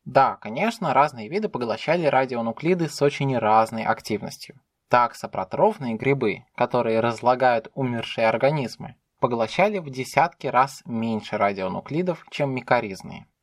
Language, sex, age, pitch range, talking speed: Russian, male, 20-39, 120-165 Hz, 110 wpm